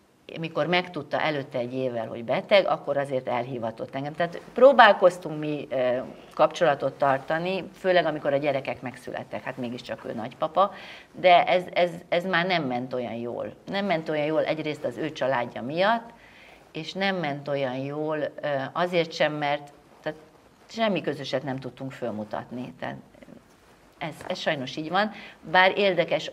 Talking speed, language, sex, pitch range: 150 wpm, Hungarian, female, 135-175 Hz